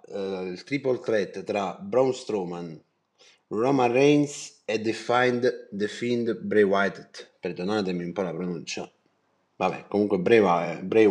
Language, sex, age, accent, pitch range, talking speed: Italian, male, 30-49, native, 100-145 Hz, 125 wpm